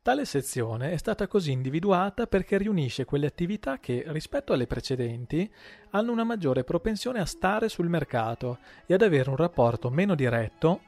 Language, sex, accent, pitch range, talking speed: Italian, male, native, 125-175 Hz, 160 wpm